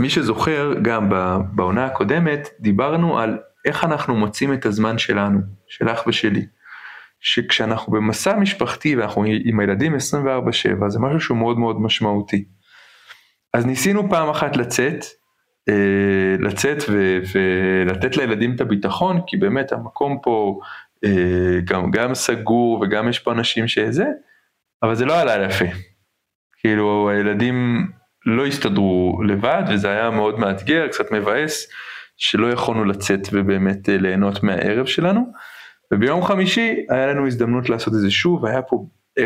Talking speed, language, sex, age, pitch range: 130 wpm, Hebrew, male, 20-39, 100-140 Hz